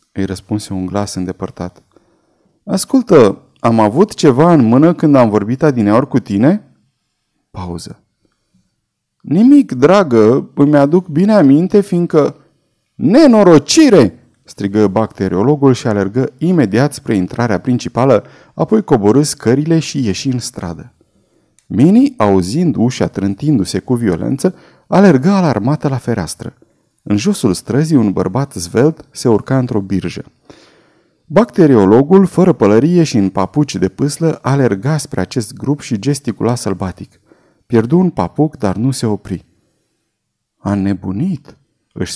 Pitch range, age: 100-155 Hz, 30-49